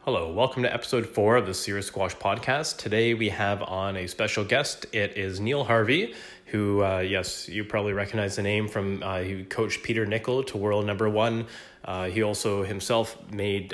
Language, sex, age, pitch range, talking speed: English, male, 30-49, 95-110 Hz, 190 wpm